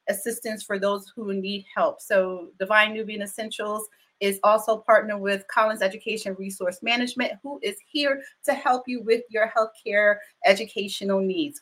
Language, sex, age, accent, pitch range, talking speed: English, female, 30-49, American, 185-225 Hz, 150 wpm